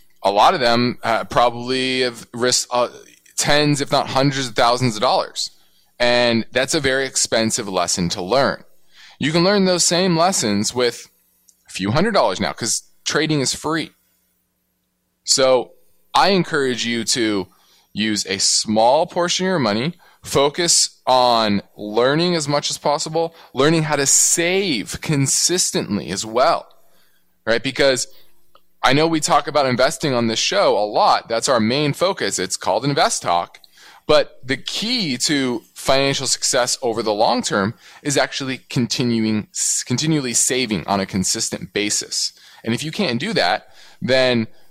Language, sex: English, male